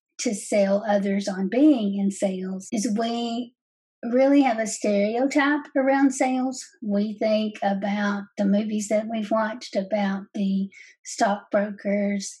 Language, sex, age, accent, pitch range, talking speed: English, female, 50-69, American, 200-240 Hz, 125 wpm